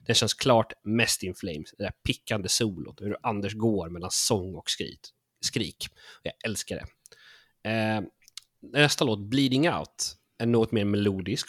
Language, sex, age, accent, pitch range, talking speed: Swedish, male, 30-49, native, 100-120 Hz, 155 wpm